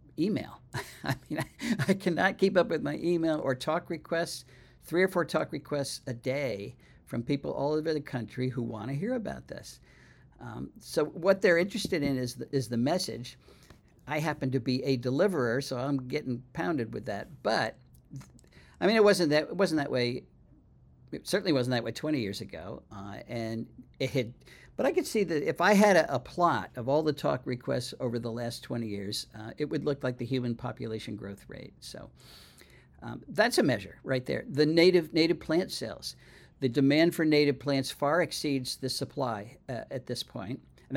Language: English